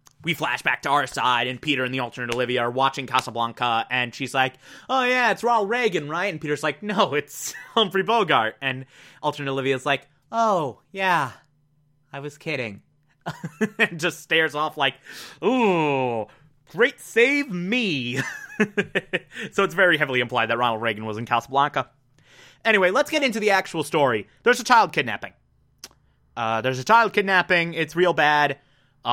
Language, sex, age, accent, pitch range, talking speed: English, male, 20-39, American, 135-195 Hz, 165 wpm